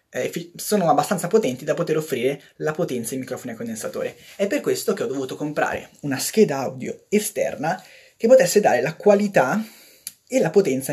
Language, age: Italian, 20-39